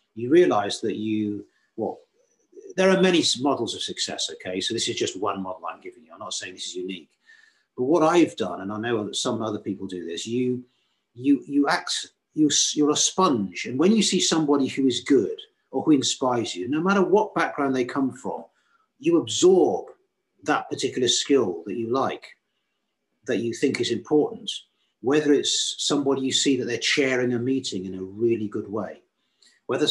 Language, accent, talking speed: English, British, 195 wpm